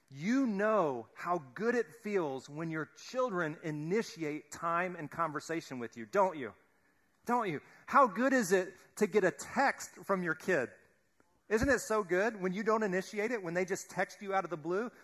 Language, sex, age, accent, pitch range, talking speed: English, male, 40-59, American, 135-195 Hz, 190 wpm